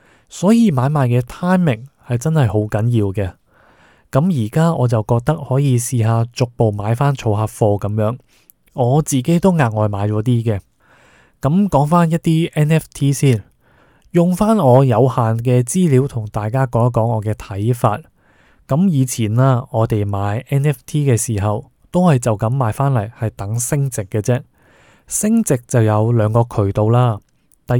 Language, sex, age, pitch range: Chinese, male, 20-39, 110-140 Hz